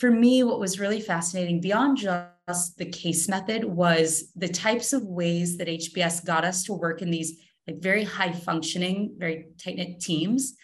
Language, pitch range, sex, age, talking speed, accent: English, 165-205 Hz, female, 30-49, 175 wpm, American